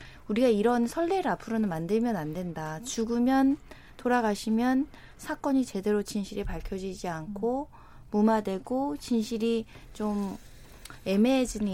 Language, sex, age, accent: Korean, female, 20-39, native